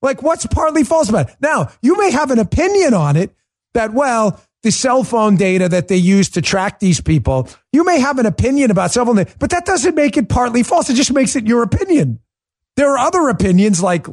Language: English